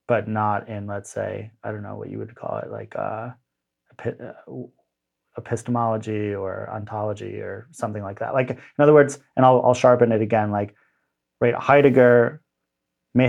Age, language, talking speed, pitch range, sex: 30-49, English, 165 wpm, 100-115 Hz, male